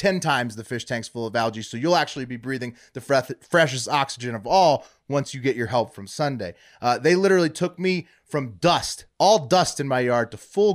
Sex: male